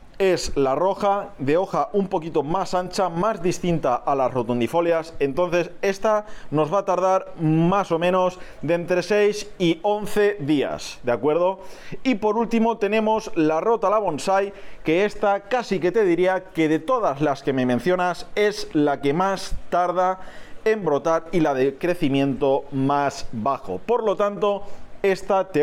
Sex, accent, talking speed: male, Spanish, 165 wpm